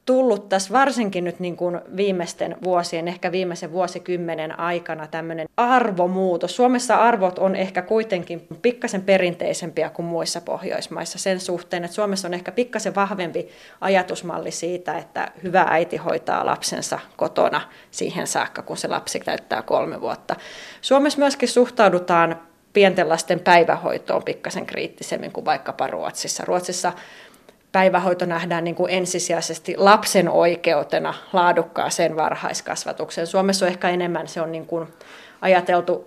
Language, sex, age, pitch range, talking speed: Finnish, female, 20-39, 170-200 Hz, 130 wpm